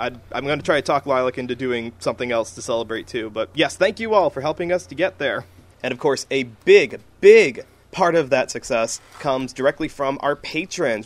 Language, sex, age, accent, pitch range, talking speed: English, male, 20-39, American, 130-190 Hz, 215 wpm